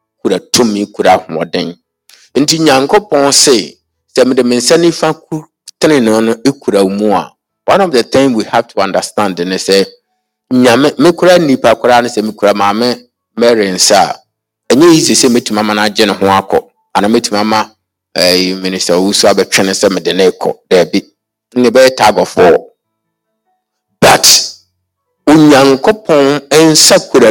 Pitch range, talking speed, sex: 110-170 Hz, 160 wpm, male